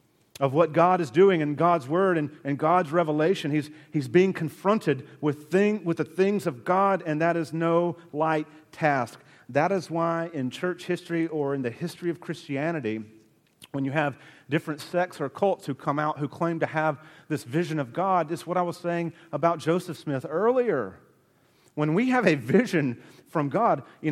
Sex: male